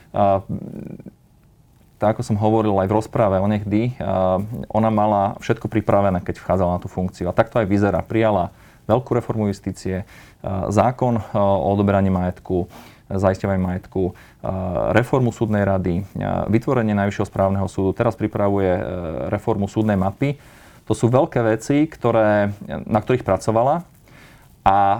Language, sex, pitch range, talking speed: Slovak, male, 100-120 Hz, 125 wpm